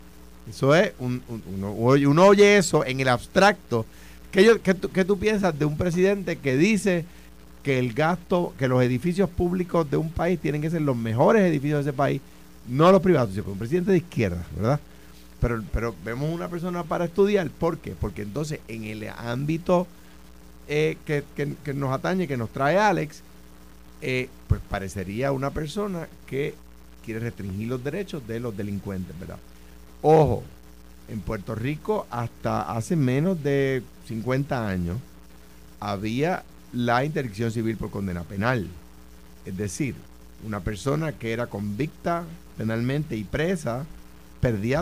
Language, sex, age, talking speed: Spanish, male, 50-69, 145 wpm